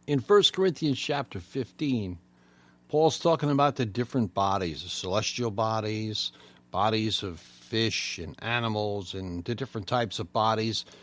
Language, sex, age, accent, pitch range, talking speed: English, male, 60-79, American, 100-155 Hz, 135 wpm